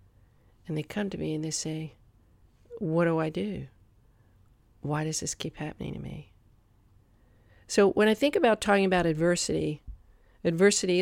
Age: 50-69